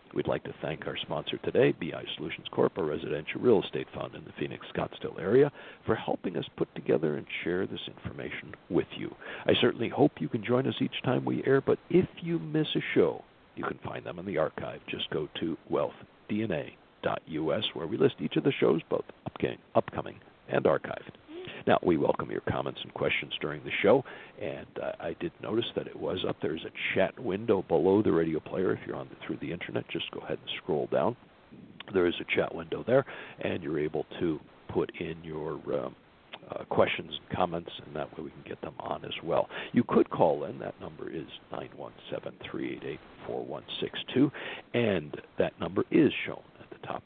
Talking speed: 200 wpm